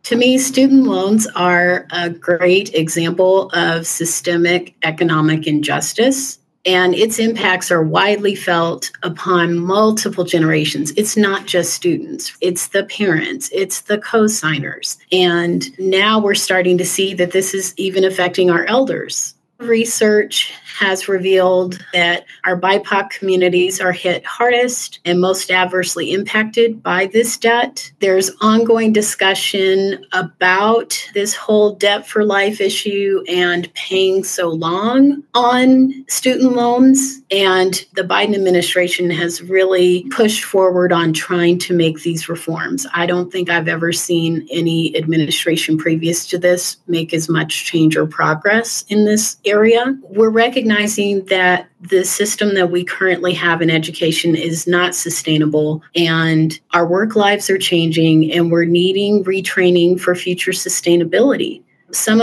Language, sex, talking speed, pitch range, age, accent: English, female, 135 wpm, 170-210 Hz, 30-49, American